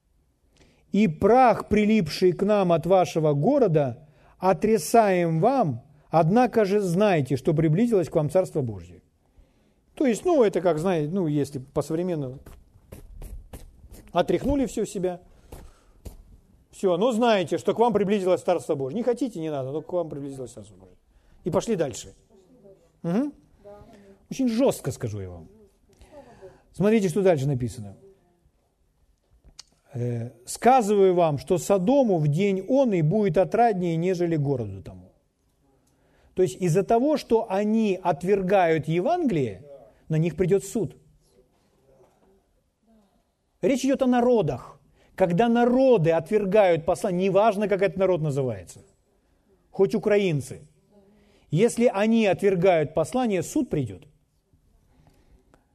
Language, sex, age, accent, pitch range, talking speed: Russian, male, 40-59, native, 140-210 Hz, 115 wpm